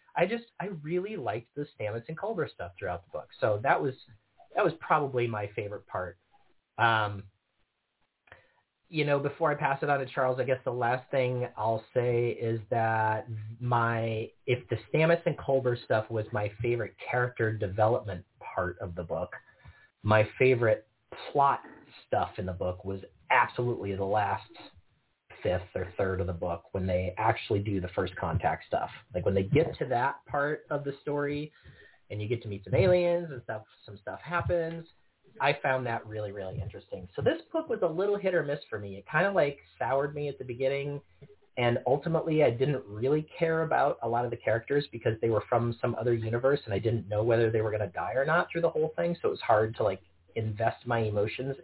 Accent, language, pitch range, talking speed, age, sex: American, English, 110-145 Hz, 200 wpm, 30-49, male